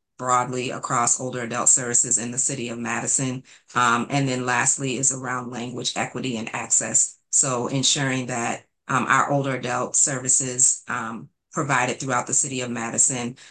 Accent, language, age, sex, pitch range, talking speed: American, English, 30-49, female, 125-135 Hz, 155 wpm